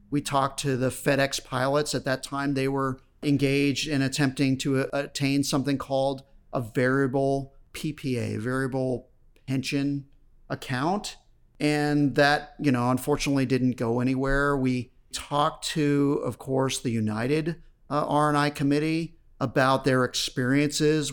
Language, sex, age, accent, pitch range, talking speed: English, male, 40-59, American, 125-145 Hz, 135 wpm